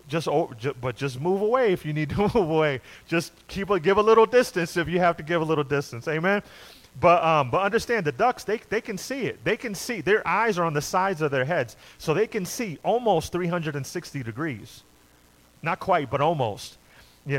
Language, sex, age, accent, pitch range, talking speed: English, male, 30-49, American, 130-195 Hz, 210 wpm